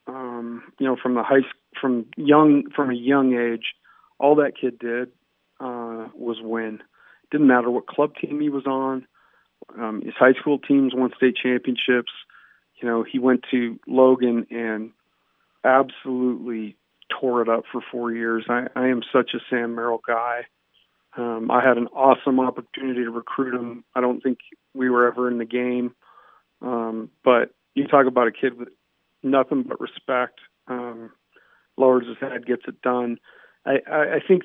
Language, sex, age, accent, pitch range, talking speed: English, male, 40-59, American, 120-135 Hz, 170 wpm